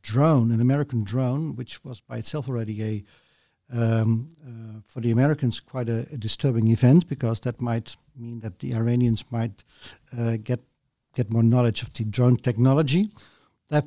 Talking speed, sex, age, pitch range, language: 165 wpm, male, 50-69, 115-140 Hz, English